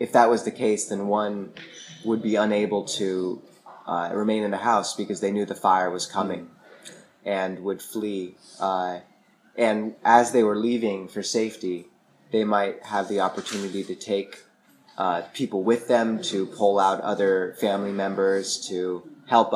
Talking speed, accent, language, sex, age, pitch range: 165 wpm, American, English, male, 20-39, 95-105 Hz